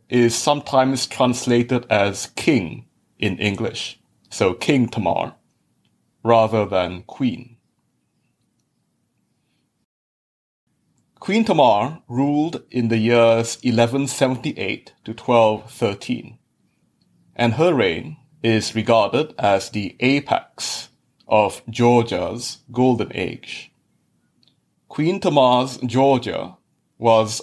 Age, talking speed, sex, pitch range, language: 30-49, 85 wpm, male, 115-135 Hz, English